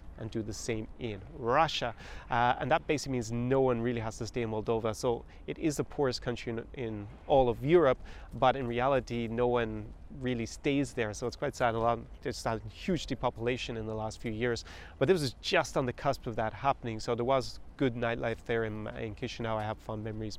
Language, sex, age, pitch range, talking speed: English, male, 30-49, 110-125 Hz, 225 wpm